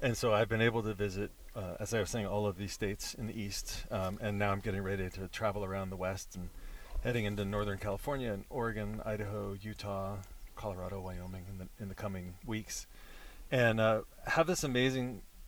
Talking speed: 200 wpm